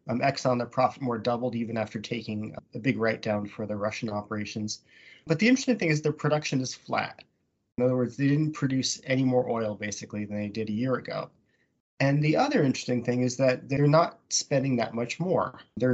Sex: male